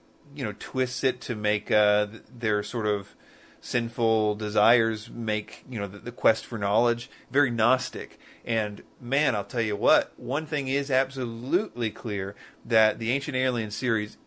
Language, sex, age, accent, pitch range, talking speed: English, male, 30-49, American, 105-130 Hz, 160 wpm